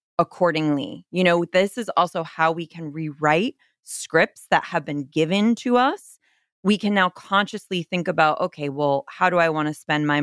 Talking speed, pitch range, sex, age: 190 wpm, 150-185 Hz, female, 30-49